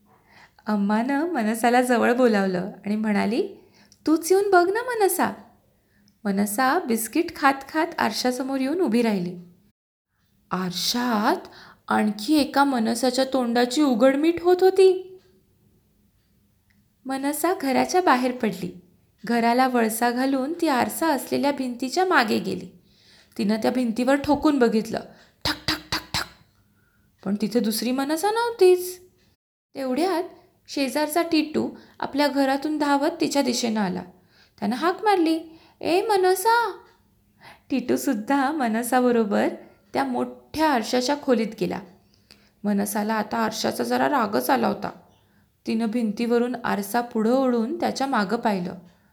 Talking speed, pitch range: 110 wpm, 225-320 Hz